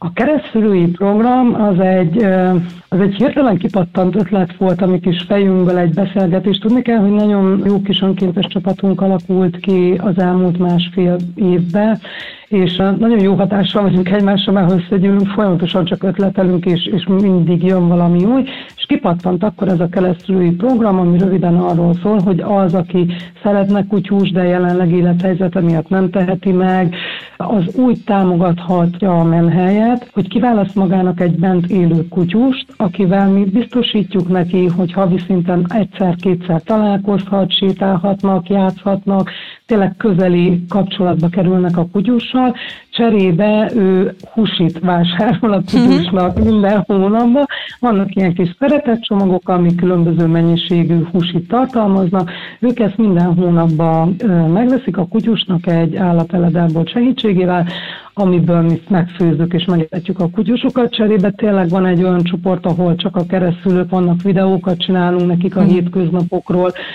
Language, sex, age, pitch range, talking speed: Hungarian, female, 60-79, 180-200 Hz, 135 wpm